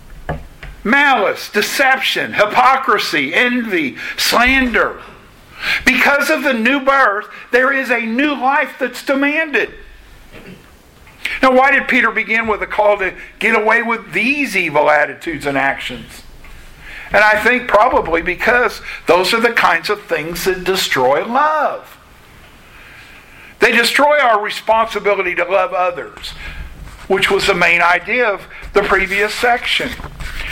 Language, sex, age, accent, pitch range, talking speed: English, male, 50-69, American, 185-260 Hz, 125 wpm